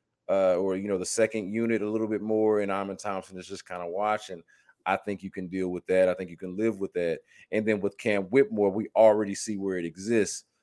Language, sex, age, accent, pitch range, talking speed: English, male, 30-49, American, 95-115 Hz, 250 wpm